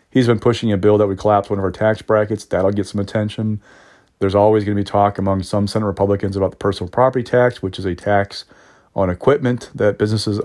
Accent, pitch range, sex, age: American, 95-110 Hz, male, 30-49